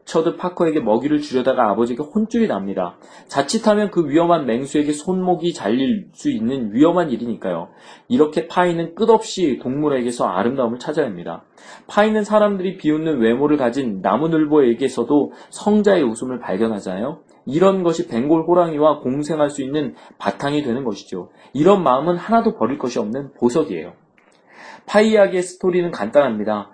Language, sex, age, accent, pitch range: Korean, male, 30-49, native, 140-195 Hz